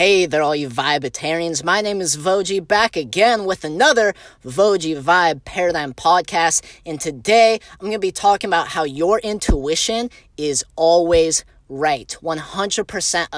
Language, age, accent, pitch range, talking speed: English, 20-39, American, 165-215 Hz, 145 wpm